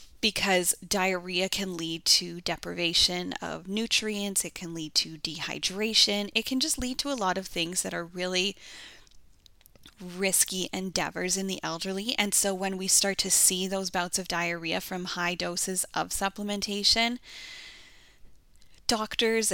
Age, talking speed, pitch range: 10-29, 145 wpm, 180-210 Hz